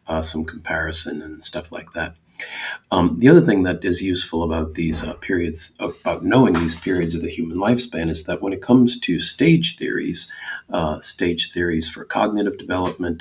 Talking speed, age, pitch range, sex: 185 wpm, 40-59, 80-95 Hz, male